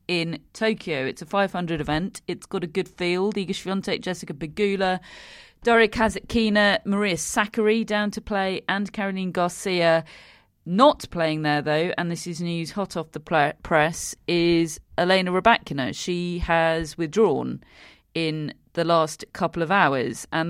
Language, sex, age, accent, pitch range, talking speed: English, female, 40-59, British, 155-200 Hz, 145 wpm